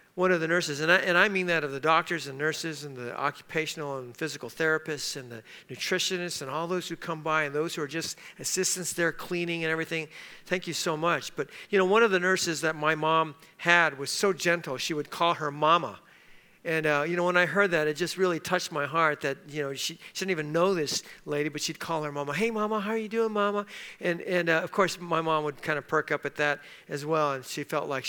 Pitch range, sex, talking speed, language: 150-185 Hz, male, 250 wpm, English